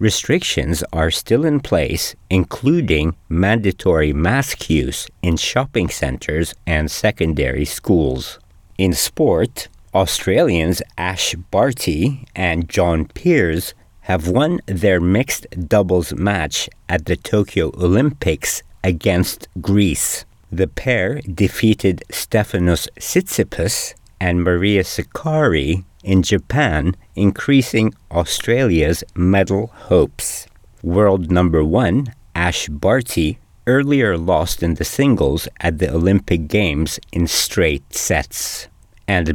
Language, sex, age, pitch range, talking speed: English, male, 50-69, 85-105 Hz, 100 wpm